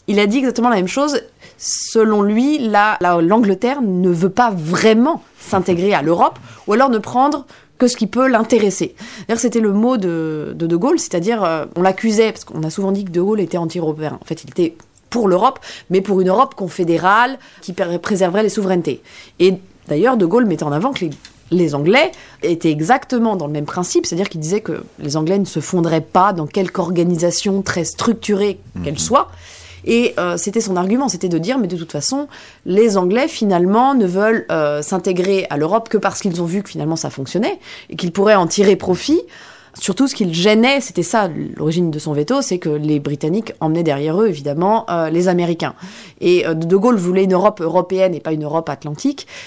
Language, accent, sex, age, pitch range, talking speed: French, French, female, 30-49, 165-220 Hz, 205 wpm